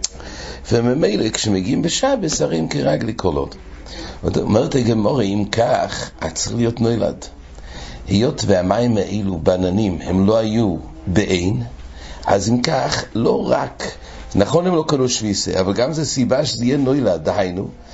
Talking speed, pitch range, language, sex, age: 135 wpm, 90-120 Hz, English, male, 60-79